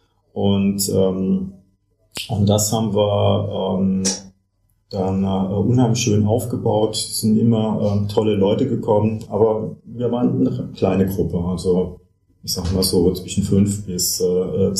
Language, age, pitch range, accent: German, 40-59, 95-110 Hz, German